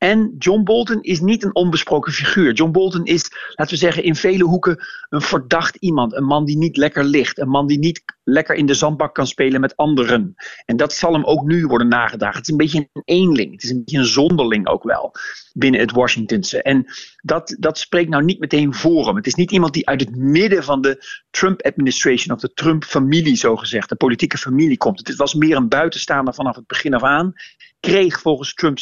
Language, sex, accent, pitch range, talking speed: Dutch, male, Dutch, 130-165 Hz, 220 wpm